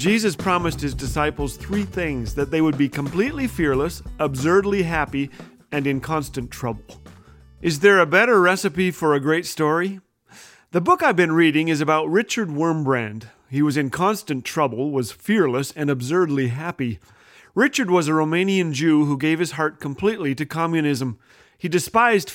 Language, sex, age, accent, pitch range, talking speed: English, male, 40-59, American, 140-185 Hz, 160 wpm